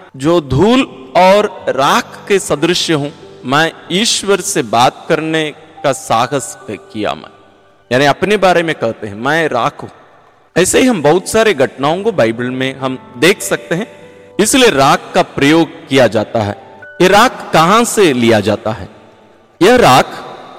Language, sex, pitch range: Hindi, male, 125-190 Hz